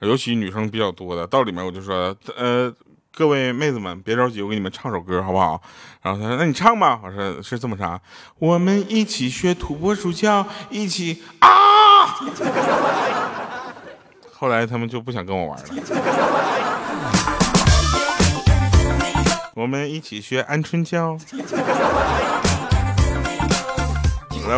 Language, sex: Chinese, male